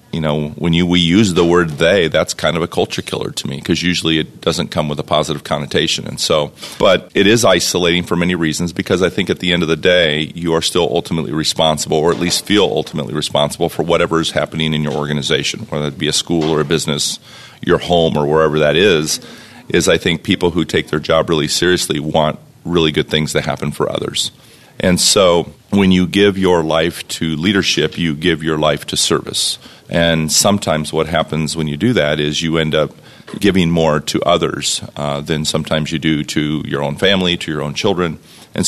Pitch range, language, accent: 75-85 Hz, English, American